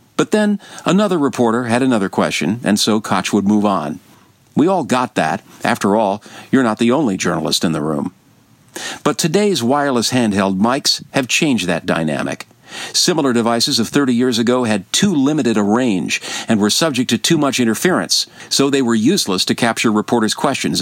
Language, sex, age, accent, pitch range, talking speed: English, male, 50-69, American, 100-130 Hz, 180 wpm